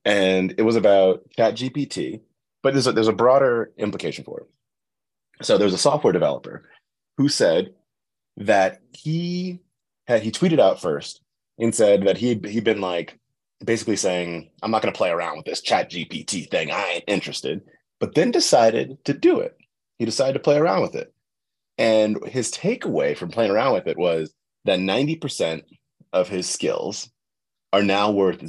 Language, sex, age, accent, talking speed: English, male, 30-49, American, 175 wpm